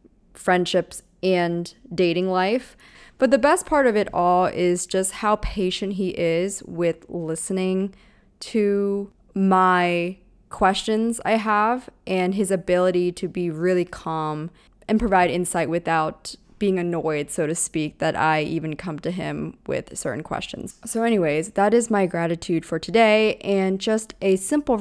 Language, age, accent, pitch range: English, 20-39, American, 170-205 Hz